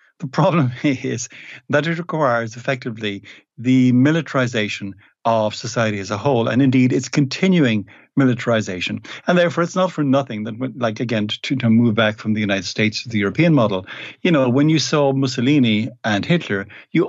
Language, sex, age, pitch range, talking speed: English, male, 60-79, 110-135 Hz, 170 wpm